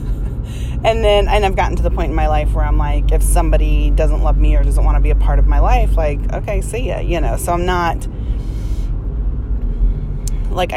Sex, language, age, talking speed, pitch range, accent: female, English, 30-49, 215 wpm, 120-195 Hz, American